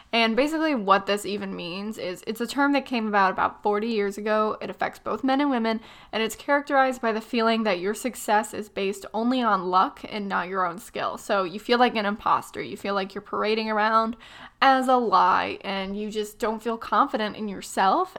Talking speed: 215 wpm